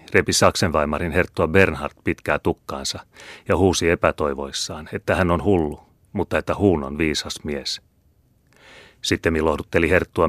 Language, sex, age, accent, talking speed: Finnish, male, 30-49, native, 130 wpm